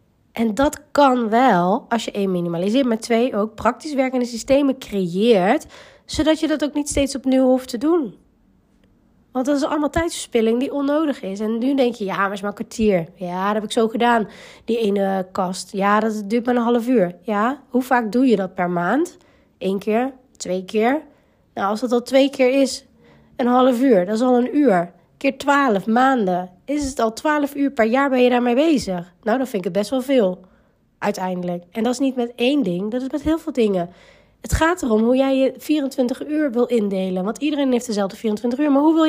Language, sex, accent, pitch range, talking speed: Dutch, female, Dutch, 205-270 Hz, 215 wpm